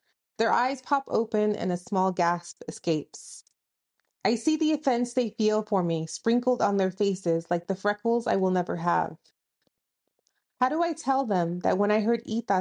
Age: 30-49